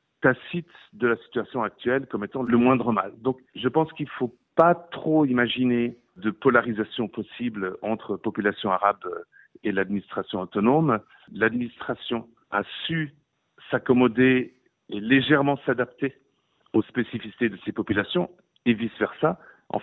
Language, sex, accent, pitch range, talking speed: French, male, French, 105-135 Hz, 125 wpm